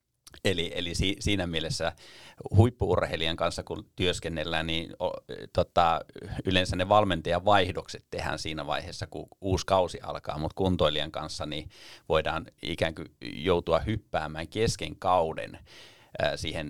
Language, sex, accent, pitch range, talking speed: Finnish, male, native, 80-105 Hz, 120 wpm